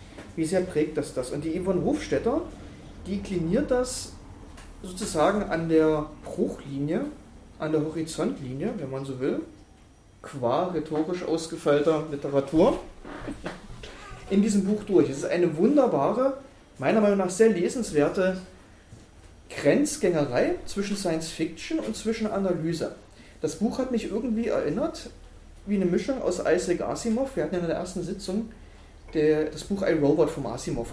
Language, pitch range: German, 150-225 Hz